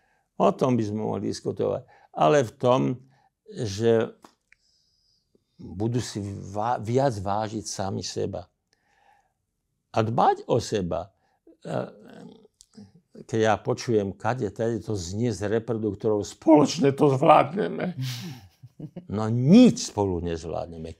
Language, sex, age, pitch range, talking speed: Slovak, male, 50-69, 100-130 Hz, 105 wpm